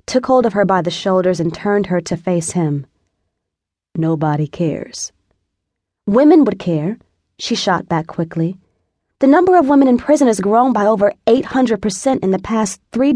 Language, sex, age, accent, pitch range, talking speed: English, female, 20-39, American, 160-230 Hz, 175 wpm